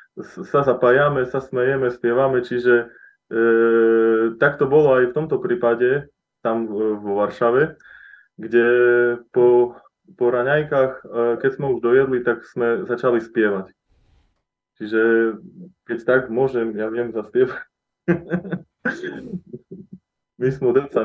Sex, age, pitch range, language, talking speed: male, 20-39, 120-155 Hz, Slovak, 110 wpm